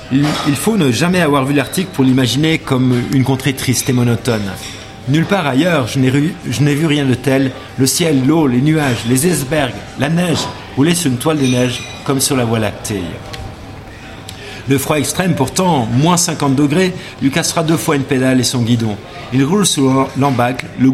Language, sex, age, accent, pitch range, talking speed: French, male, 50-69, French, 120-155 Hz, 200 wpm